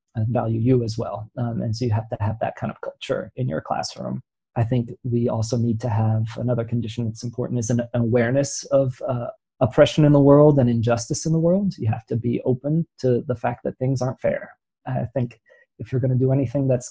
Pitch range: 120-140 Hz